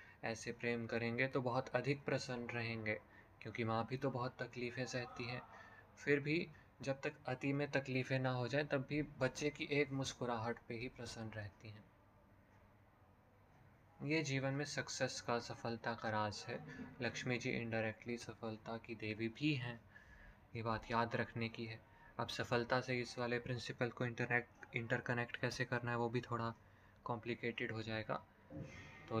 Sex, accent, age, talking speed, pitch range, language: male, native, 20-39, 160 wpm, 115-135 Hz, Hindi